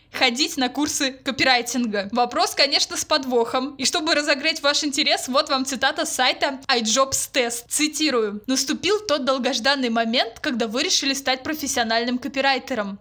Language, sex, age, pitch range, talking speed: Russian, female, 20-39, 245-290 Hz, 140 wpm